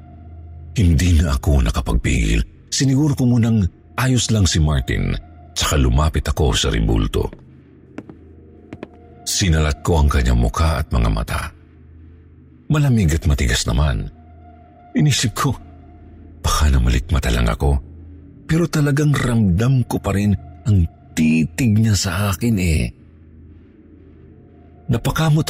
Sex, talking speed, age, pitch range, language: male, 110 wpm, 50-69, 75-95 Hz, Filipino